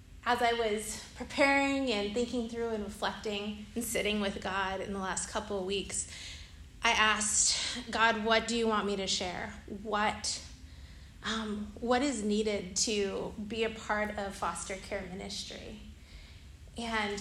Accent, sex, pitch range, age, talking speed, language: American, female, 195-230 Hz, 20-39, 145 wpm, English